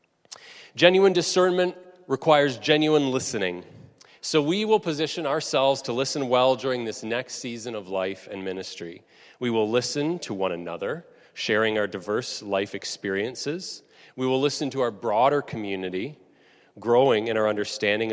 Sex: male